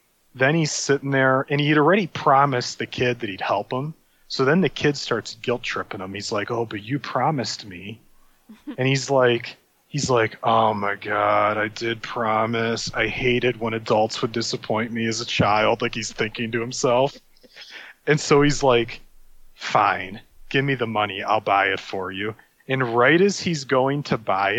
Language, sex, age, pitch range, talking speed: English, male, 30-49, 115-145 Hz, 185 wpm